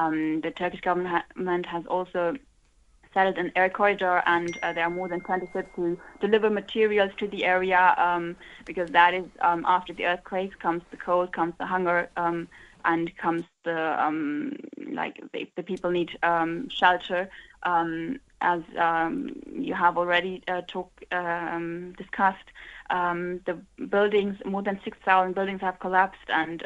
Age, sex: 20-39, female